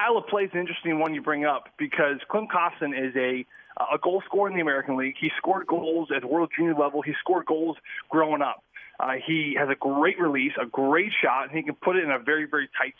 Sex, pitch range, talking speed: male, 145-185 Hz, 245 wpm